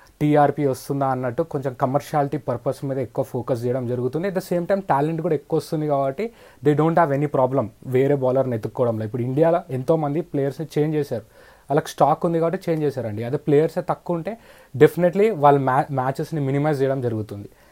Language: Telugu